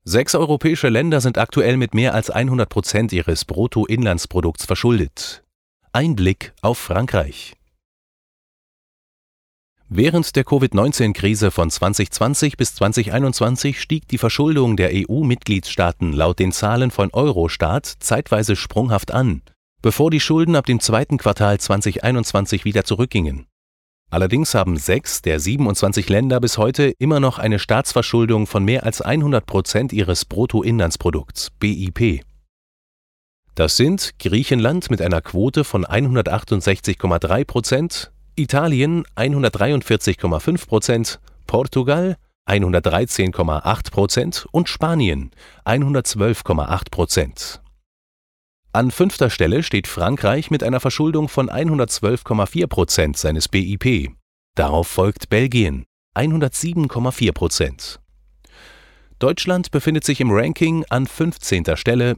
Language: German